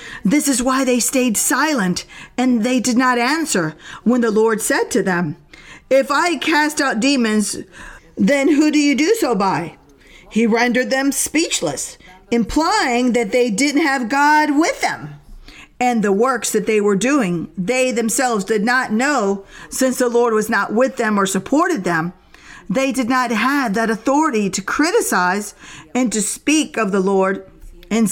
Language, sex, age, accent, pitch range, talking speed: English, female, 50-69, American, 215-280 Hz, 165 wpm